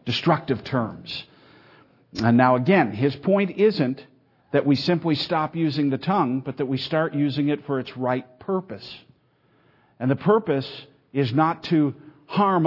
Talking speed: 150 wpm